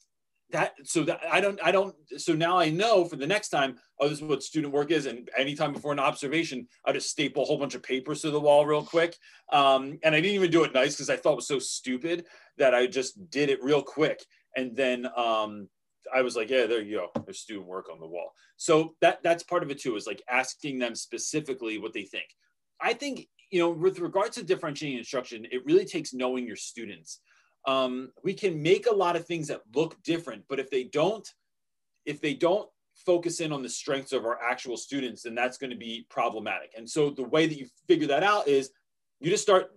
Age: 30-49